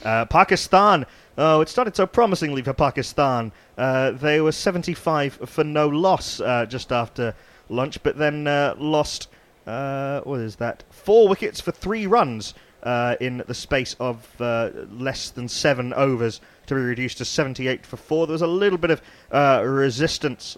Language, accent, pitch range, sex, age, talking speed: English, British, 115-150 Hz, male, 30-49, 175 wpm